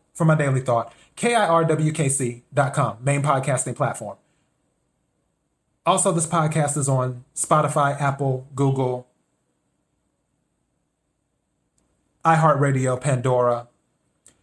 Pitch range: 130-155 Hz